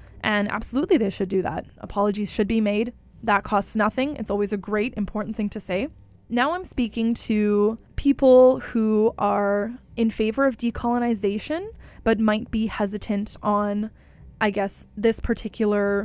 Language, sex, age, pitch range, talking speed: English, female, 20-39, 205-255 Hz, 155 wpm